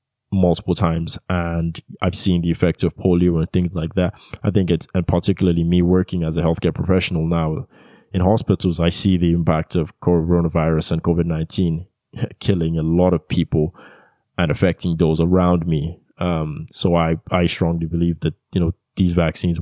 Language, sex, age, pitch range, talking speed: English, male, 20-39, 85-95 Hz, 170 wpm